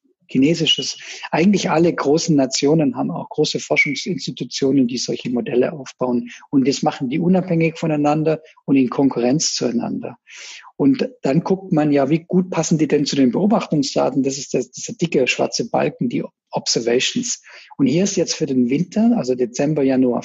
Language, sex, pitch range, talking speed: German, male, 135-190 Hz, 160 wpm